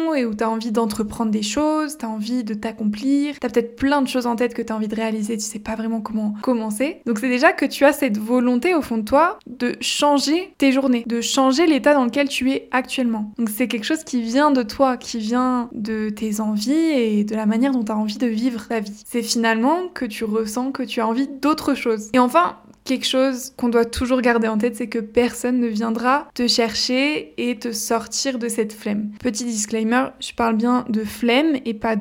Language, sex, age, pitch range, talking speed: French, female, 20-39, 225-255 Hz, 235 wpm